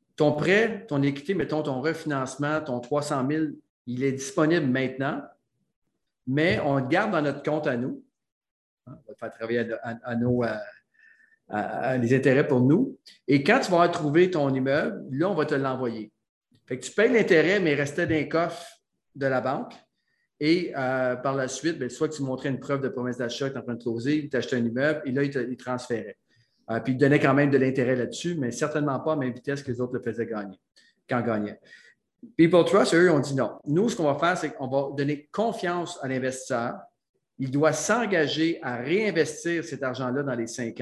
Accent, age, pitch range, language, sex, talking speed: Canadian, 40-59, 125-150 Hz, French, male, 215 wpm